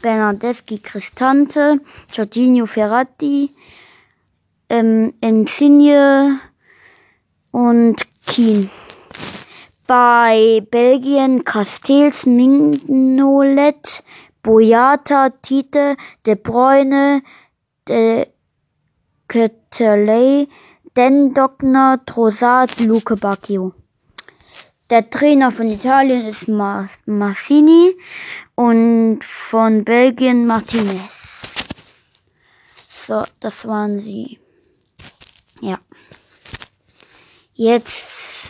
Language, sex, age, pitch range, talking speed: German, female, 20-39, 225-270 Hz, 60 wpm